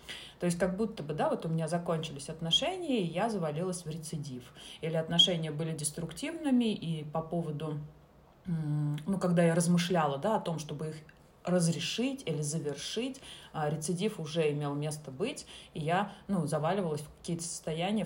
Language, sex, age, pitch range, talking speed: Russian, female, 30-49, 150-185 Hz, 155 wpm